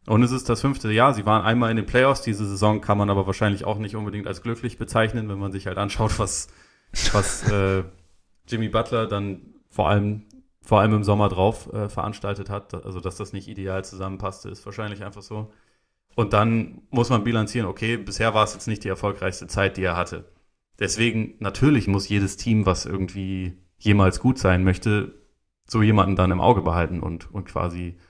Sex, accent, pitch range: male, German, 95-110 Hz